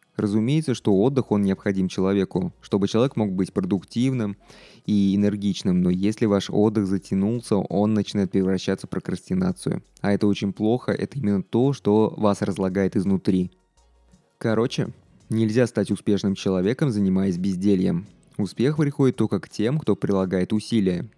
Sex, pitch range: male, 95-115 Hz